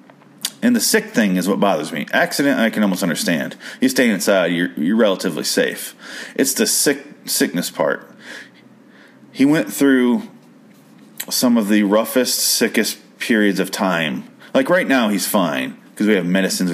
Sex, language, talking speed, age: male, English, 160 wpm, 30-49